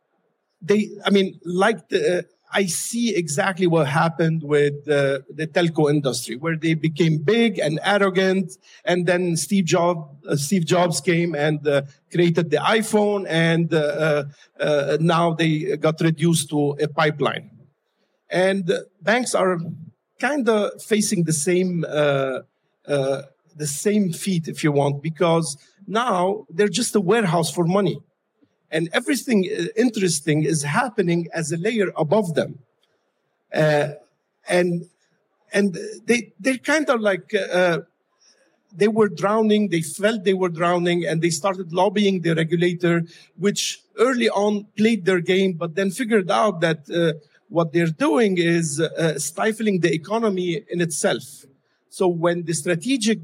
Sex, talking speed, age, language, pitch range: male, 145 wpm, 50-69, English, 160-200 Hz